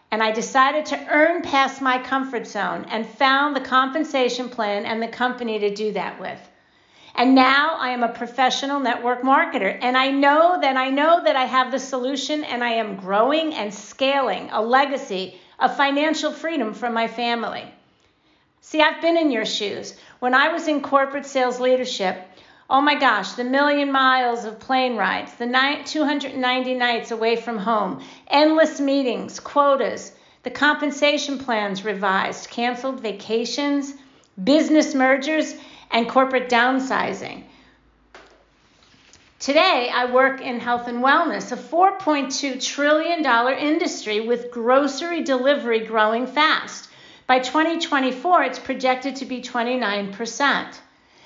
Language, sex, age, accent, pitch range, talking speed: English, female, 50-69, American, 235-285 Hz, 140 wpm